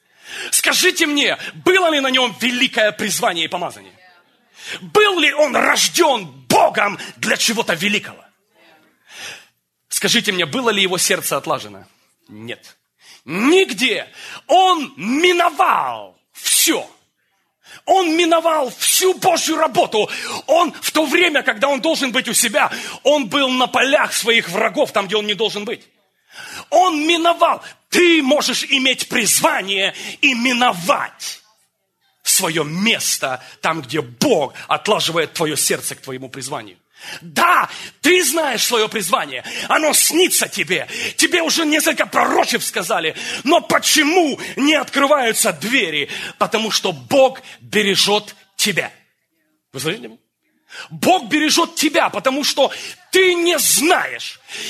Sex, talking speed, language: male, 120 wpm, English